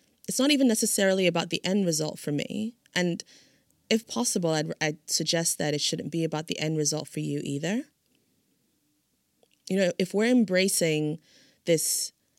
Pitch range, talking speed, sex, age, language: 145-185 Hz, 160 wpm, female, 30-49, English